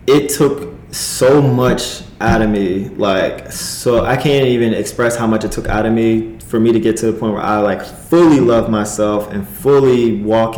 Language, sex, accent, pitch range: English, male, American, 110-125 Hz